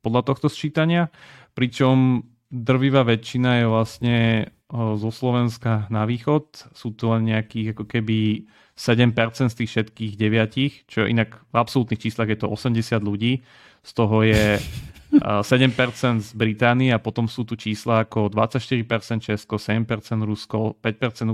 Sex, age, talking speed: male, 30-49, 135 wpm